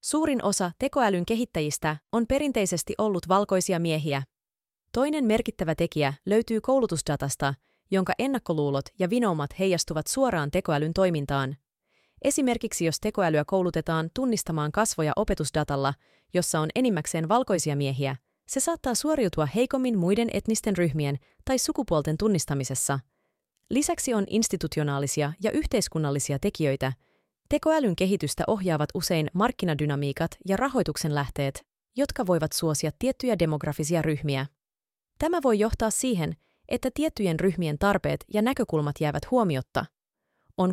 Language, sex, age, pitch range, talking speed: Finnish, female, 30-49, 155-235 Hz, 115 wpm